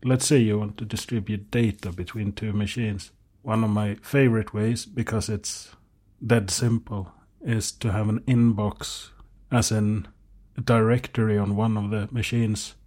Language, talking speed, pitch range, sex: English, 155 wpm, 100-125 Hz, male